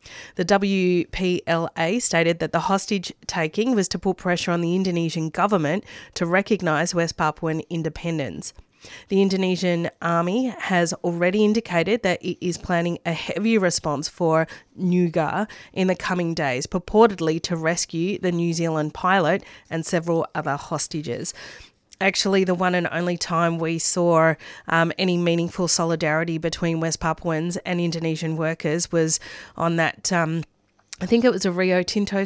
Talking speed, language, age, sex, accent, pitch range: 145 wpm, English, 30-49, female, Australian, 165-185 Hz